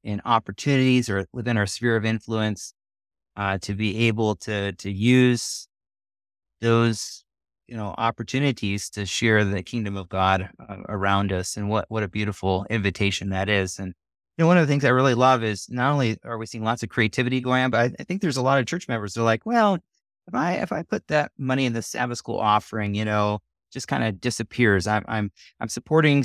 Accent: American